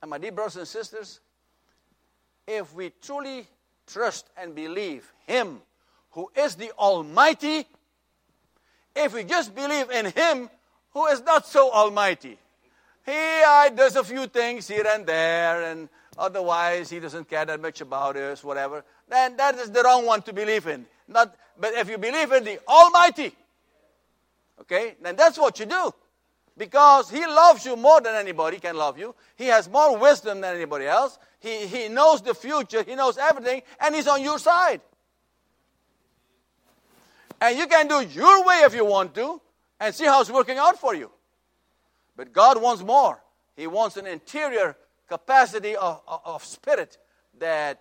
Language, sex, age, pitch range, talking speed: English, male, 60-79, 190-290 Hz, 165 wpm